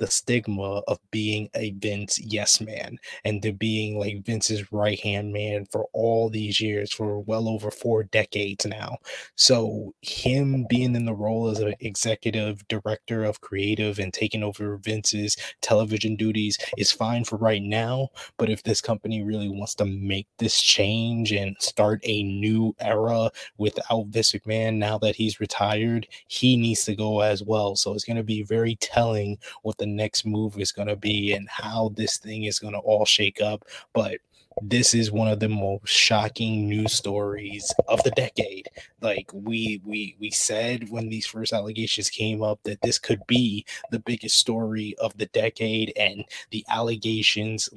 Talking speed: 175 wpm